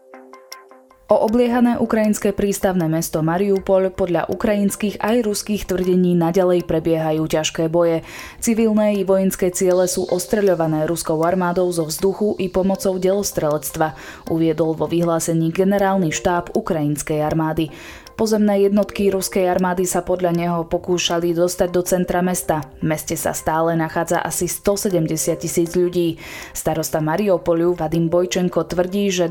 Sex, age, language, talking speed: female, 20-39, Slovak, 125 wpm